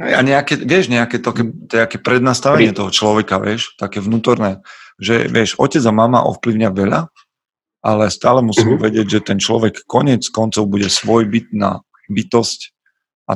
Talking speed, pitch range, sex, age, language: 155 wpm, 100-120 Hz, male, 40-59, Slovak